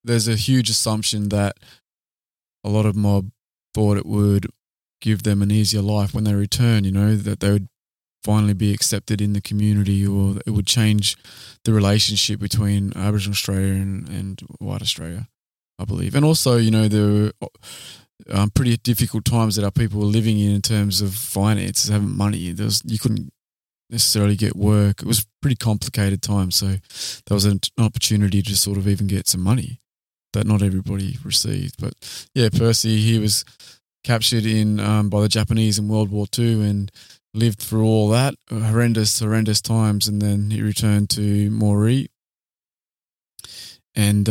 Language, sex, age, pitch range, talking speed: English, male, 20-39, 100-115 Hz, 170 wpm